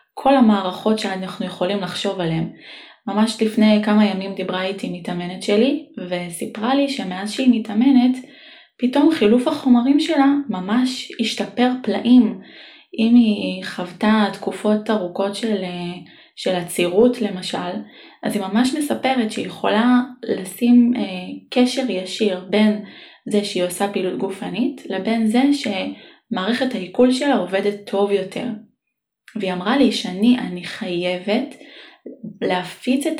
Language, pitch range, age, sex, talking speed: Hebrew, 190-245 Hz, 20-39, female, 115 wpm